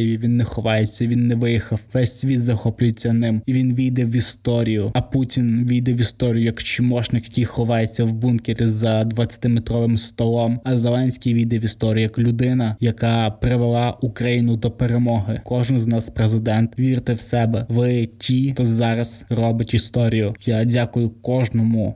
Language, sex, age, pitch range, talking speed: Ukrainian, male, 20-39, 115-125 Hz, 155 wpm